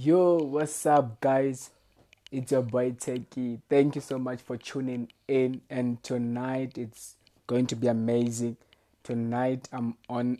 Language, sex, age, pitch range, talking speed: English, male, 20-39, 105-125 Hz, 145 wpm